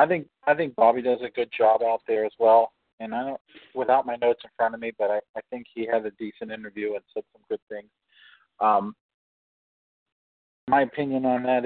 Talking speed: 215 wpm